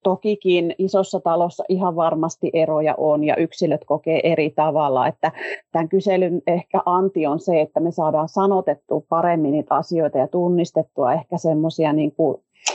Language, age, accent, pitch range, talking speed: Finnish, 30-49, native, 160-195 Hz, 145 wpm